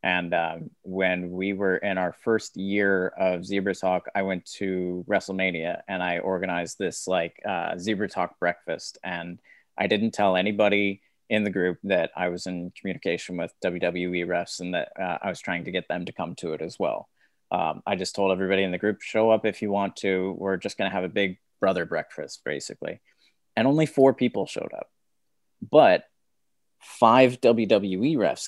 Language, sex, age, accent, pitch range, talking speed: English, male, 20-39, American, 90-110 Hz, 190 wpm